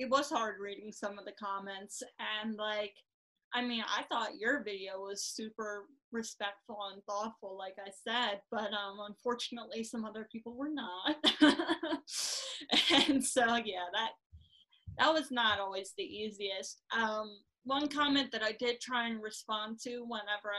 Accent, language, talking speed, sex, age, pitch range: American, English, 155 wpm, female, 10-29, 210-245 Hz